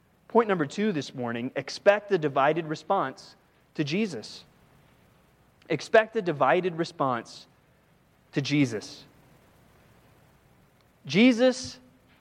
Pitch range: 140-180 Hz